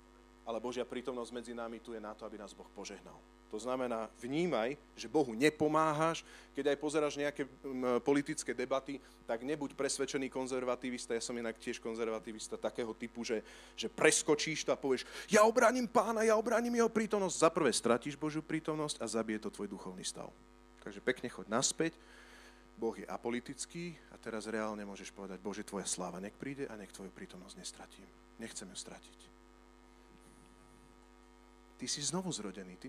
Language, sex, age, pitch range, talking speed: Slovak, male, 40-59, 110-155 Hz, 165 wpm